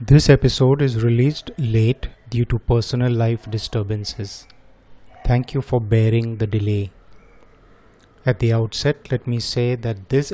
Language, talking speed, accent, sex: Hindi, 140 wpm, native, male